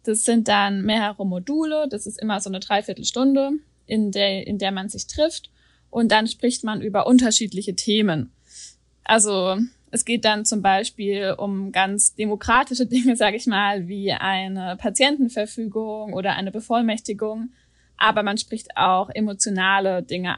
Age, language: 20-39, German